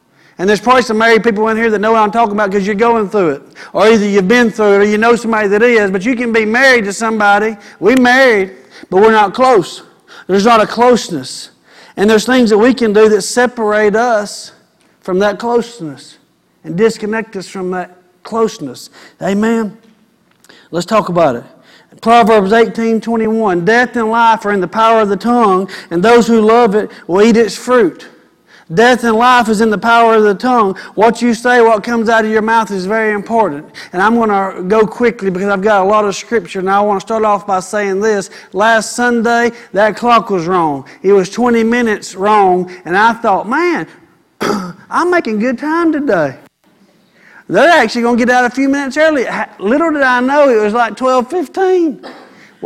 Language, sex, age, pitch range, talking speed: English, male, 50-69, 200-235 Hz, 200 wpm